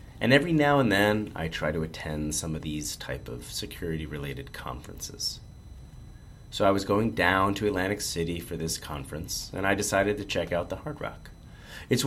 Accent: American